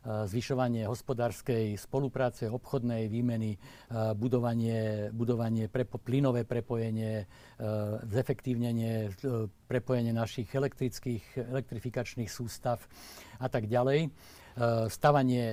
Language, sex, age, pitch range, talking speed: Slovak, male, 60-79, 115-130 Hz, 75 wpm